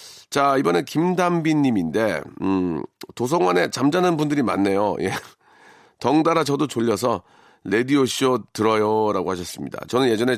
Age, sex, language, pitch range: 40-59, male, Korean, 110-155 Hz